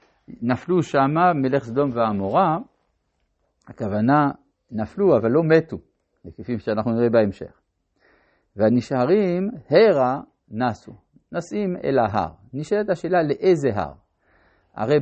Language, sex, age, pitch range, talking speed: Hebrew, male, 50-69, 115-165 Hz, 100 wpm